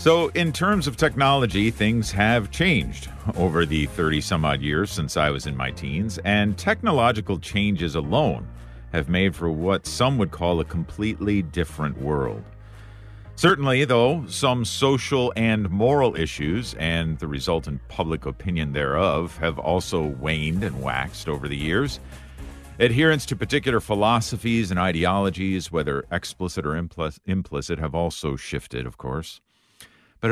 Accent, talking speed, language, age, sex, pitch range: American, 145 wpm, English, 50-69, male, 80-120 Hz